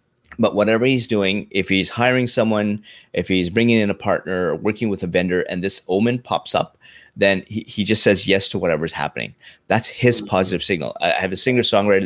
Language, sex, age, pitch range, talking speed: English, male, 30-49, 95-120 Hz, 205 wpm